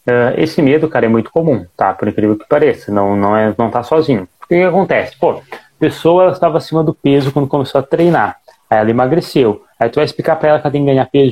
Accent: Brazilian